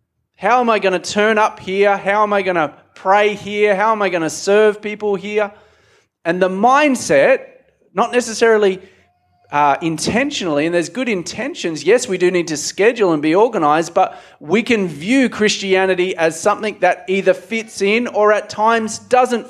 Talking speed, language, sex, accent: 180 wpm, English, male, Australian